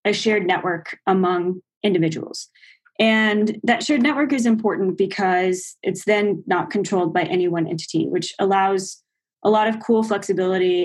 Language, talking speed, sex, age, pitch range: English, 150 wpm, female, 20-39, 180-215 Hz